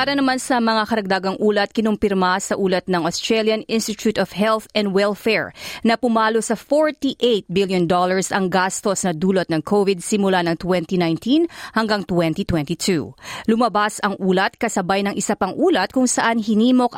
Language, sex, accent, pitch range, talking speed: Filipino, female, native, 180-230 Hz, 150 wpm